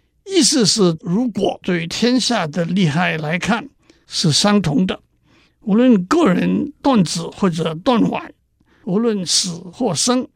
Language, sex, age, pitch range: Chinese, male, 60-79, 175-250 Hz